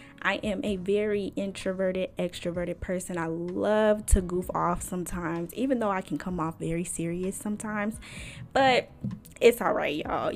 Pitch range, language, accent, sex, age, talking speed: 175-215 Hz, English, American, female, 10-29, 155 wpm